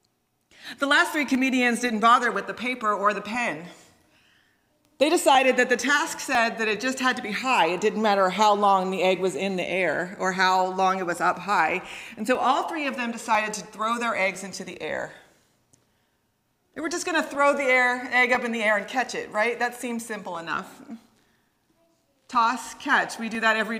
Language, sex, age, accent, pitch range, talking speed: English, female, 40-59, American, 190-255 Hz, 210 wpm